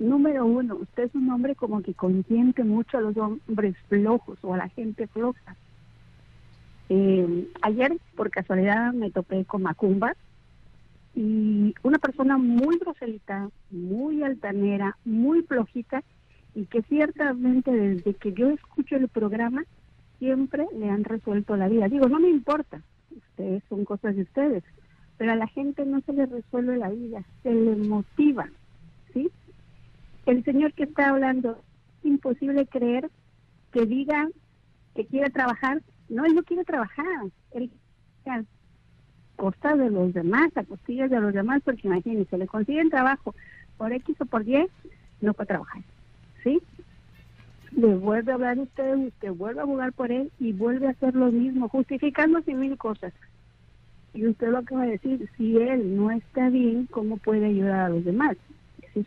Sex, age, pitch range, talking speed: female, 50-69, 205-270 Hz, 155 wpm